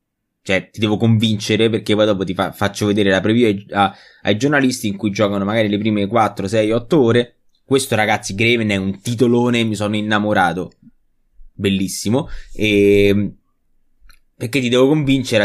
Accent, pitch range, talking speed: native, 100-125 Hz, 150 wpm